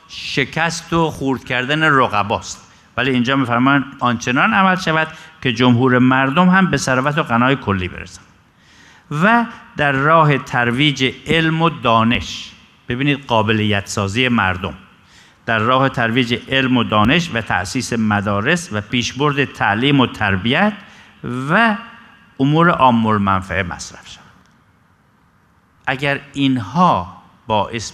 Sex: male